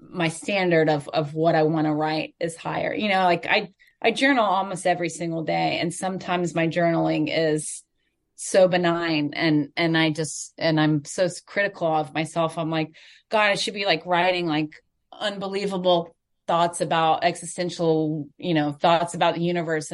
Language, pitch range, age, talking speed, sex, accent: English, 155-185 Hz, 30-49, 170 wpm, female, American